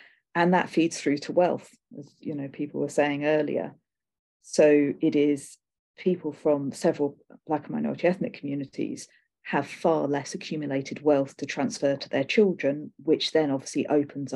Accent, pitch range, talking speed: British, 145-170 Hz, 160 wpm